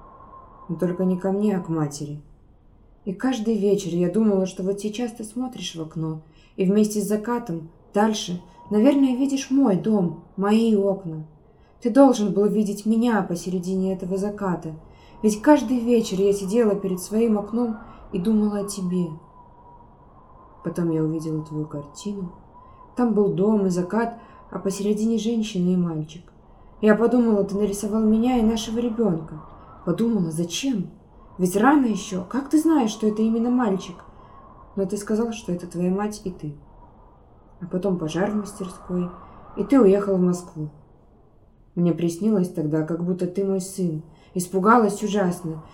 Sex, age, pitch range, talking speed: female, 20-39, 175-215 Hz, 150 wpm